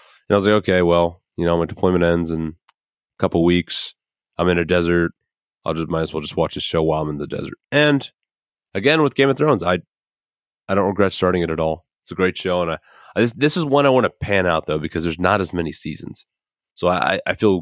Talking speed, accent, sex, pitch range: 255 wpm, American, male, 85-125 Hz